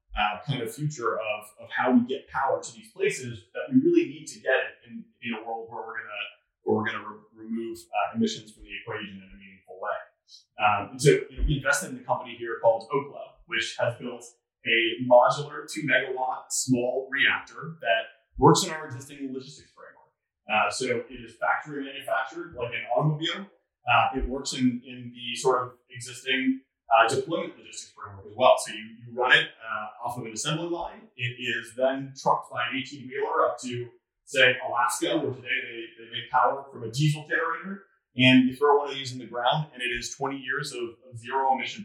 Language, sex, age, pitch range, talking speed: English, male, 20-39, 115-150 Hz, 205 wpm